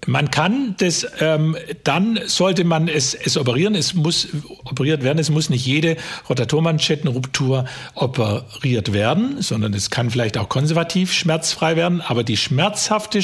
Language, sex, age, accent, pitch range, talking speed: German, male, 50-69, German, 130-170 Hz, 145 wpm